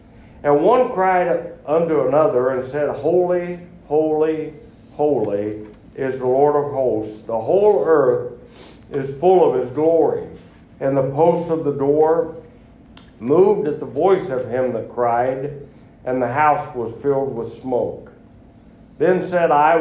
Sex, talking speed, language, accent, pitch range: male, 140 wpm, English, American, 130-160 Hz